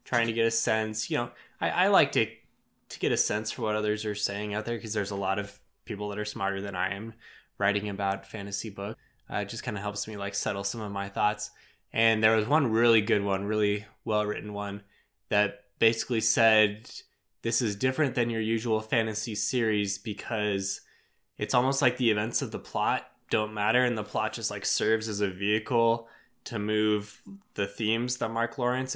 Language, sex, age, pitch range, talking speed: English, male, 10-29, 105-120 Hz, 205 wpm